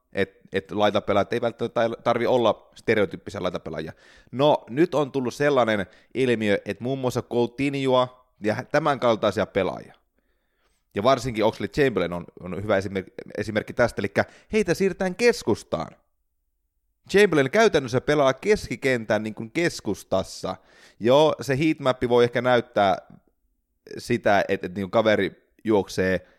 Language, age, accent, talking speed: Finnish, 30-49, native, 125 wpm